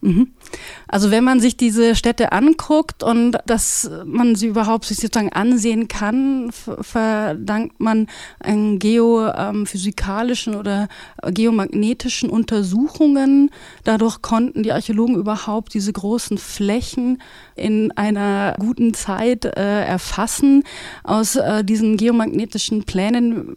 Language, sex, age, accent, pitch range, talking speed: German, female, 30-49, German, 205-245 Hz, 100 wpm